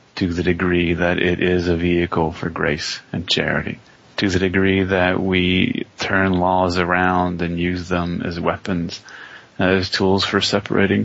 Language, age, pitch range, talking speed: English, 30-49, 90-100 Hz, 155 wpm